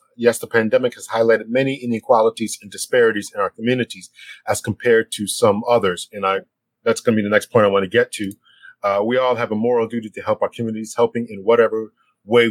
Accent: American